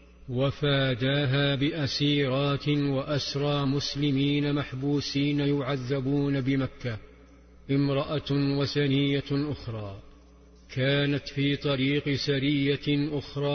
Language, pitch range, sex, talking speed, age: Arabic, 135-145 Hz, male, 65 wpm, 50-69